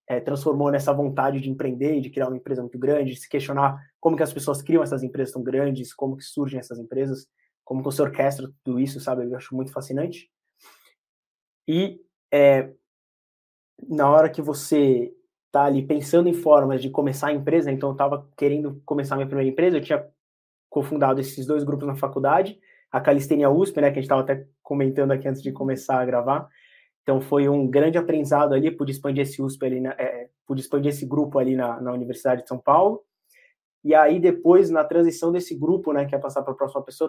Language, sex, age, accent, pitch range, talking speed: Portuguese, male, 20-39, Brazilian, 135-155 Hz, 210 wpm